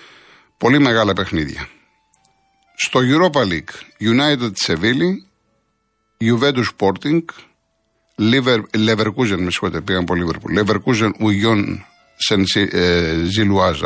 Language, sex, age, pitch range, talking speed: Greek, male, 50-69, 100-125 Hz, 90 wpm